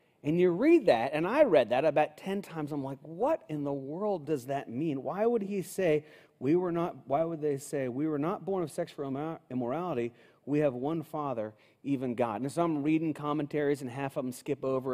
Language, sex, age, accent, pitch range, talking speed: English, male, 30-49, American, 140-180 Hz, 220 wpm